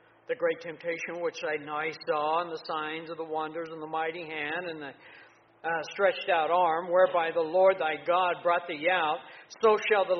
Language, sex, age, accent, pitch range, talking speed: English, male, 60-79, American, 155-195 Hz, 200 wpm